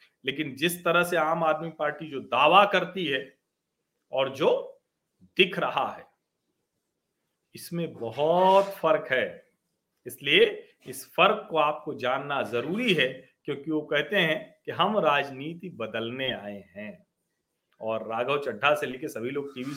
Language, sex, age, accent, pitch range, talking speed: Hindi, male, 40-59, native, 145-195 Hz, 145 wpm